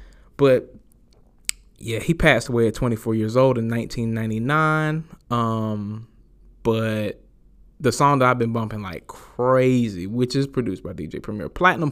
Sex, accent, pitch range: male, American, 110-130 Hz